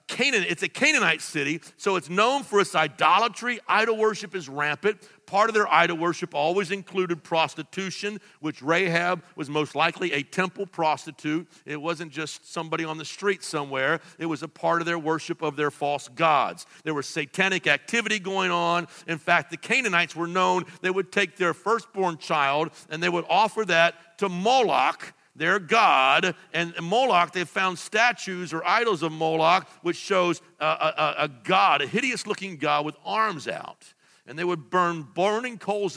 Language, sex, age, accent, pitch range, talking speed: English, male, 50-69, American, 155-190 Hz, 175 wpm